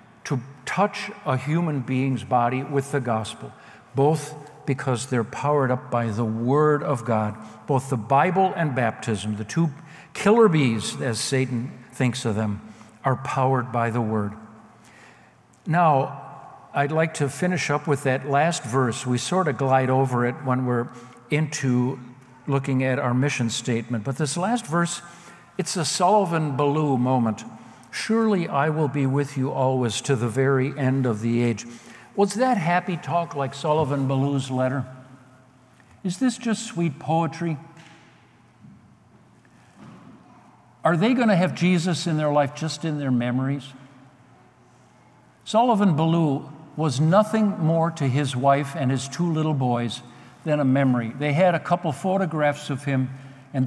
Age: 60-79